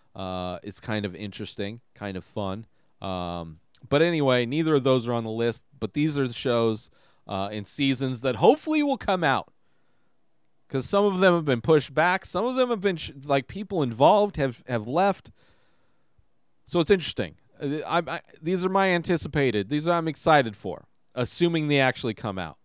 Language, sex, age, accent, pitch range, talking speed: English, male, 30-49, American, 115-170 Hz, 185 wpm